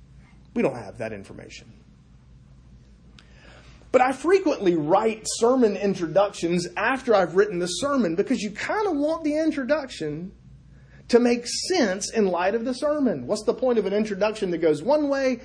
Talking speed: 160 wpm